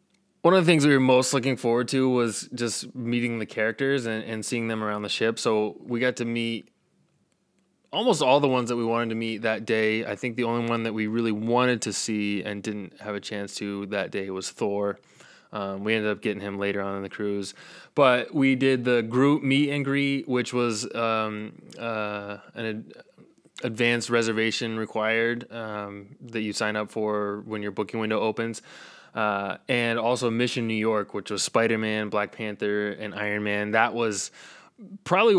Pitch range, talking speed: 105-120 Hz, 195 wpm